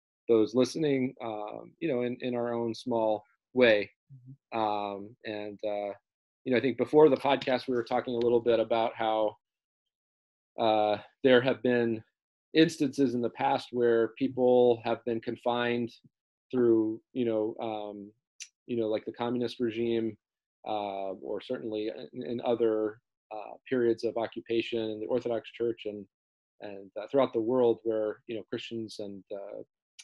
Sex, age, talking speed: male, 40-59, 155 wpm